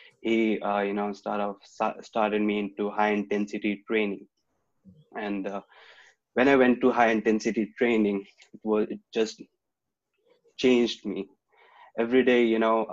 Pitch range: 105-120 Hz